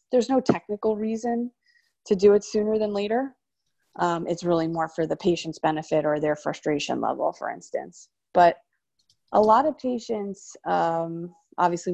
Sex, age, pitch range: female, 30-49, 160-200 Hz